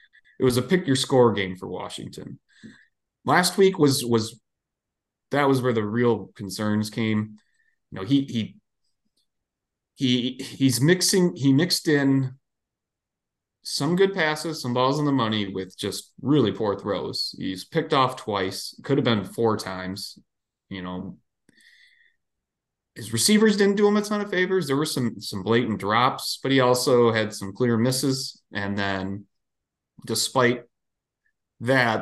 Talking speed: 150 wpm